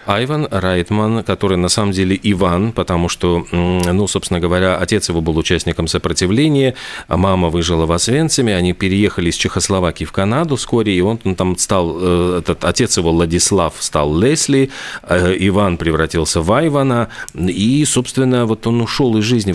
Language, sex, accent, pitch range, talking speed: Russian, male, native, 90-110 Hz, 155 wpm